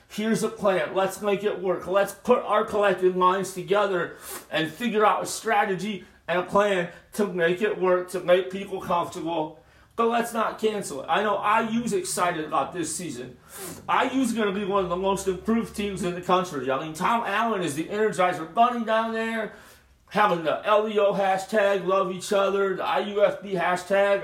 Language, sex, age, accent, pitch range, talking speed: English, male, 40-59, American, 175-200 Hz, 185 wpm